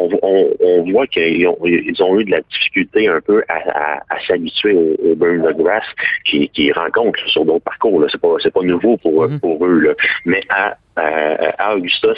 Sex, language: male, French